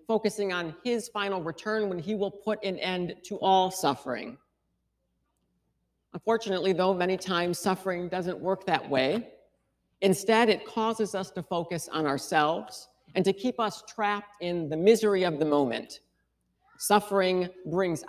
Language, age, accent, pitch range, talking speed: English, 50-69, American, 160-205 Hz, 145 wpm